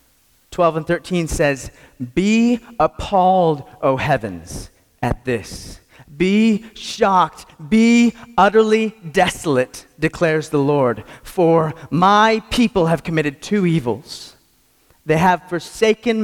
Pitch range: 110-165 Hz